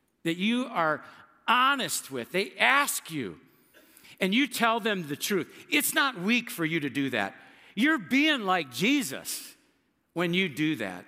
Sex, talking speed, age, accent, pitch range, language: male, 165 wpm, 50-69, American, 140-185 Hz, English